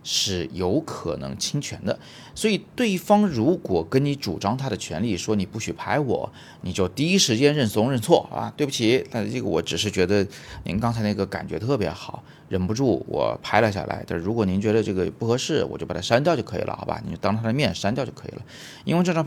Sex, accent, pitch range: male, native, 95-135 Hz